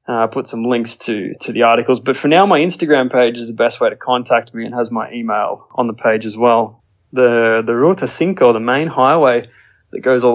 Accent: Australian